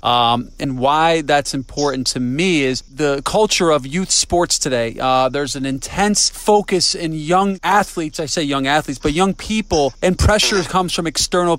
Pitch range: 150-195 Hz